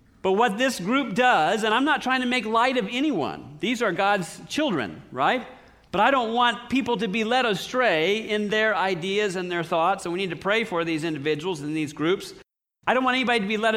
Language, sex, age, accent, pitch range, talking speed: English, male, 40-59, American, 180-225 Hz, 225 wpm